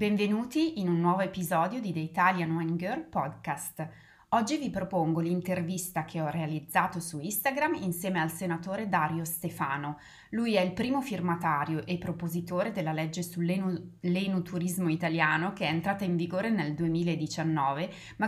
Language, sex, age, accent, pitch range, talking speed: Italian, female, 20-39, native, 160-185 Hz, 145 wpm